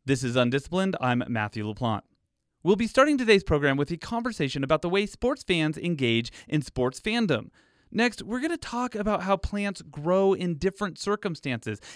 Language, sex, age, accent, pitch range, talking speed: English, male, 30-49, American, 140-220 Hz, 175 wpm